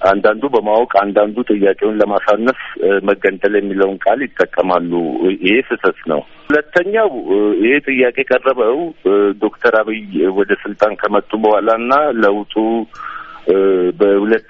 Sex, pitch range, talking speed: male, 100-160 Hz, 100 wpm